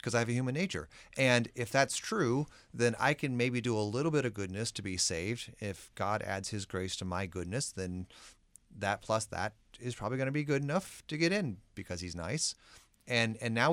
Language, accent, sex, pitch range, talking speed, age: English, American, male, 90-120 Hz, 225 wpm, 30-49